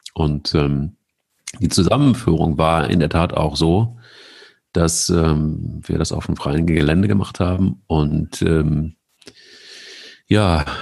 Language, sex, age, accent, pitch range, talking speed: German, male, 40-59, German, 80-100 Hz, 130 wpm